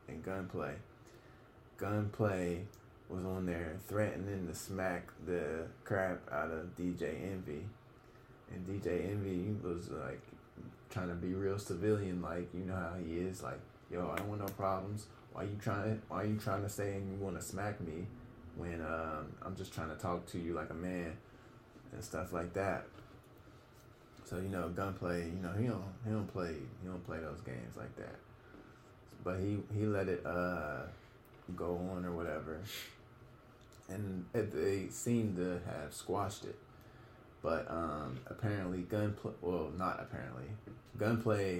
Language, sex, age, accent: English, male, 20-39, American